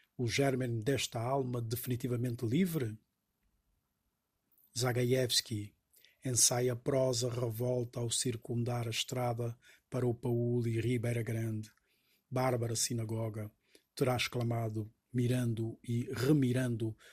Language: Portuguese